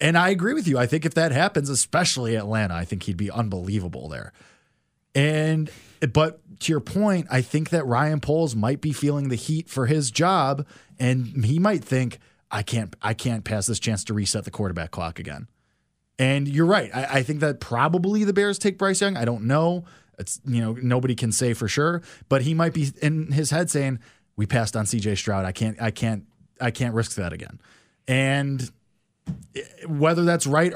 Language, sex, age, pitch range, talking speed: English, male, 20-39, 115-165 Hz, 200 wpm